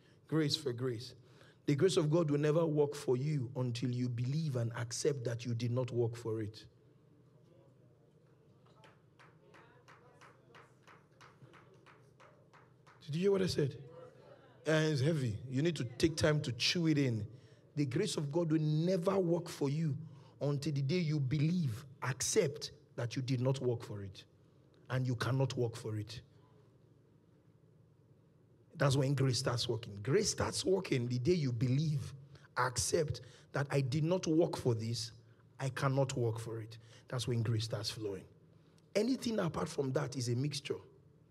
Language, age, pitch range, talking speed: English, 40-59, 125-150 Hz, 155 wpm